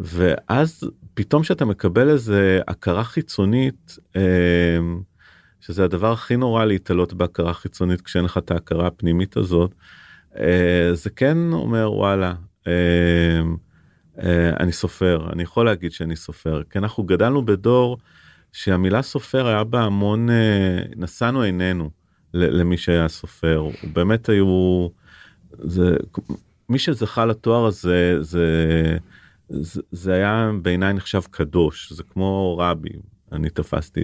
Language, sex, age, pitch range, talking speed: Hebrew, male, 40-59, 85-105 Hz, 110 wpm